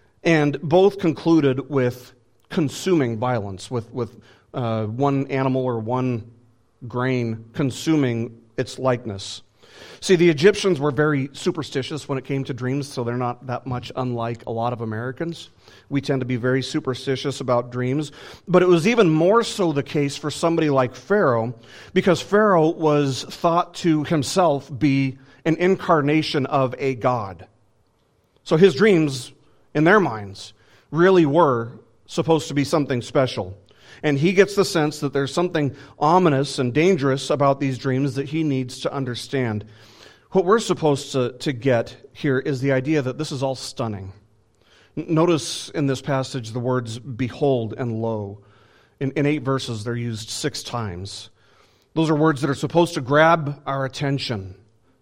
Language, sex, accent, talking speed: English, male, American, 155 wpm